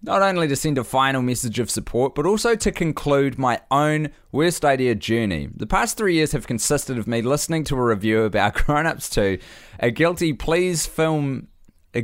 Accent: Australian